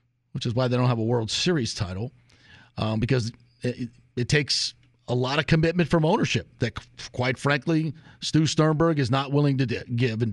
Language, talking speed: English, 185 wpm